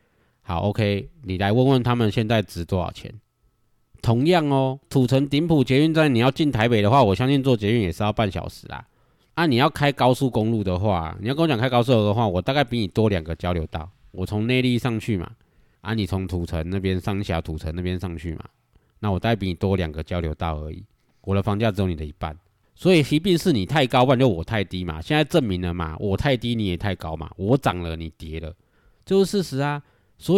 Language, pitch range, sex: Chinese, 95-135 Hz, male